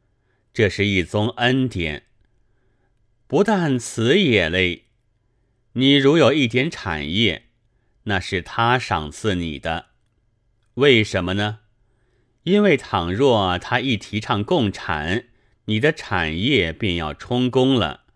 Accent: native